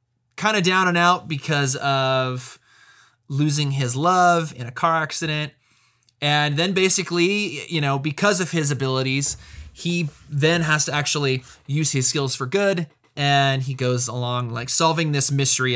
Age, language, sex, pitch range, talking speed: 20-39, English, male, 125-165 Hz, 155 wpm